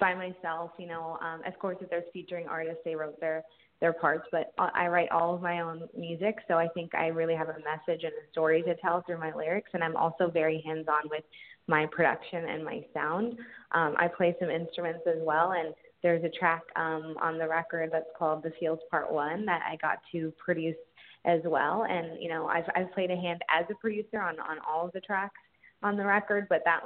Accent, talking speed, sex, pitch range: American, 230 wpm, female, 160-175 Hz